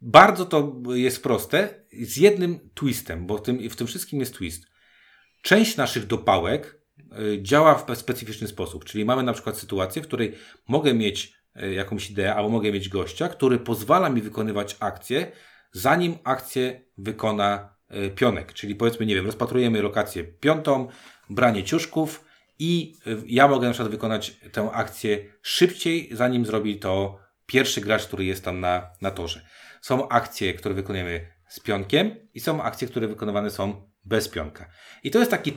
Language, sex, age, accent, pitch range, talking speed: Polish, male, 30-49, native, 105-130 Hz, 155 wpm